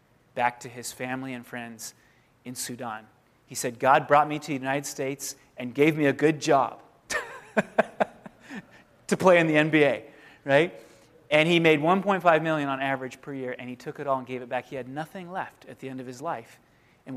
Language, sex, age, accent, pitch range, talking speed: English, male, 30-49, American, 130-160 Hz, 205 wpm